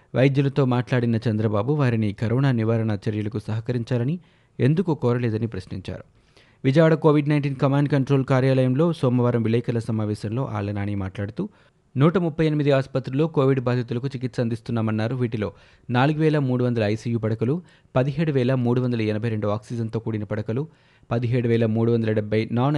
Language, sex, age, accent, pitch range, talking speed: Telugu, male, 20-39, native, 110-135 Hz, 110 wpm